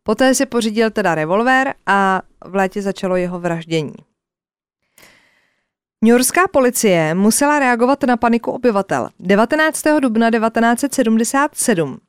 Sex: female